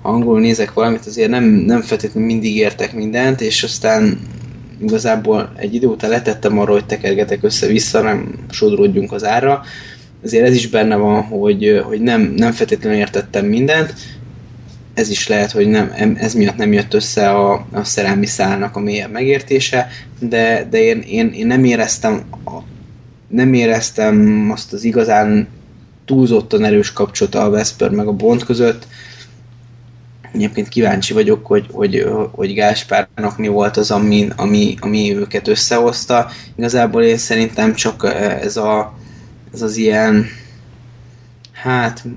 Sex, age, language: male, 20-39, Hungarian